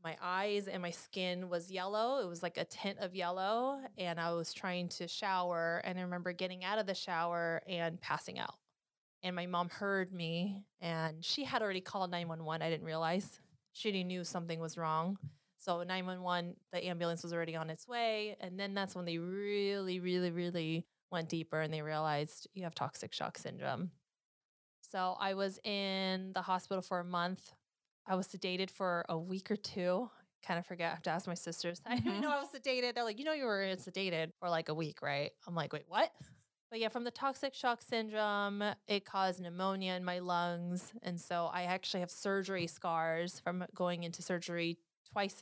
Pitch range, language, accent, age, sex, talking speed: 170-195 Hz, English, American, 20-39, female, 195 wpm